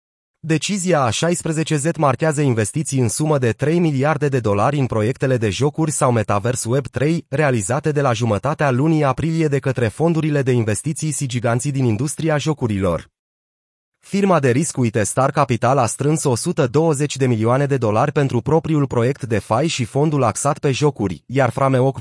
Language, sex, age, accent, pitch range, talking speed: Romanian, male, 30-49, native, 120-150 Hz, 160 wpm